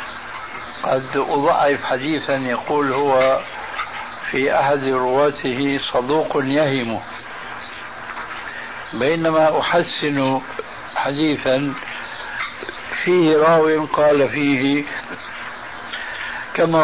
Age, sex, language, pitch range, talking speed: 60-79, male, Arabic, 130-155 Hz, 60 wpm